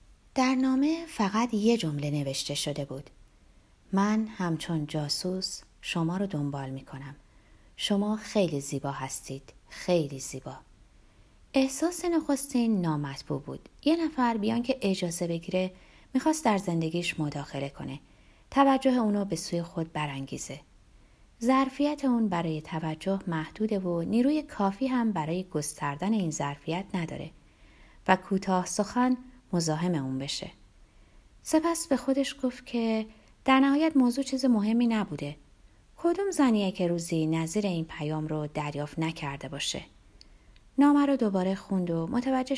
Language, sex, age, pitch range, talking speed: Persian, female, 30-49, 155-250 Hz, 130 wpm